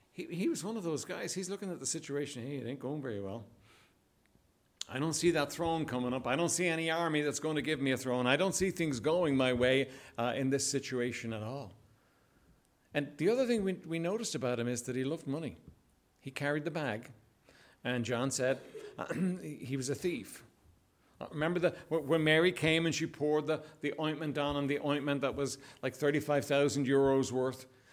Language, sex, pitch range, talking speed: English, male, 125-165 Hz, 205 wpm